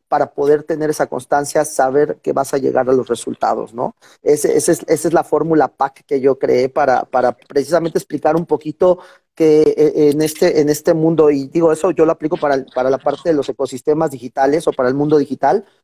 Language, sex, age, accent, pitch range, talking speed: Spanish, male, 40-59, Mexican, 135-170 Hz, 195 wpm